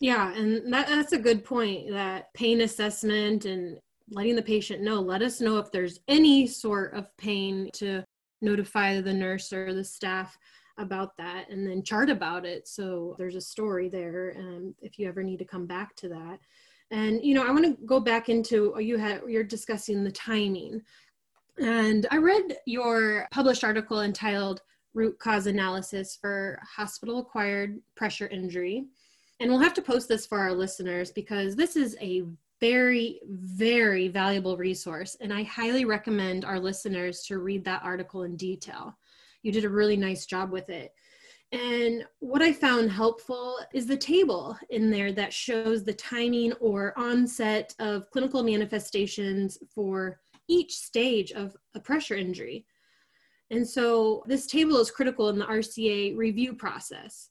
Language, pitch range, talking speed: English, 190-235 Hz, 165 wpm